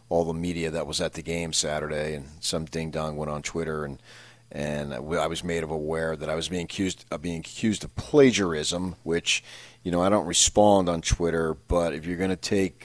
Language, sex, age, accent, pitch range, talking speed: English, male, 40-59, American, 80-100 Hz, 220 wpm